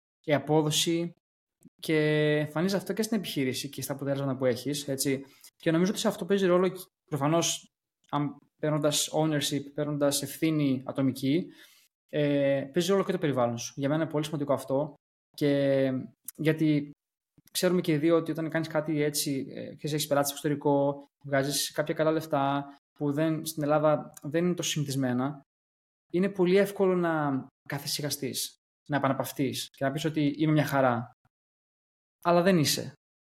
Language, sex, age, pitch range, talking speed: Greek, male, 20-39, 135-160 Hz, 150 wpm